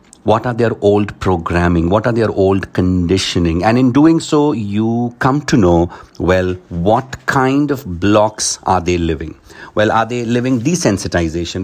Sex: male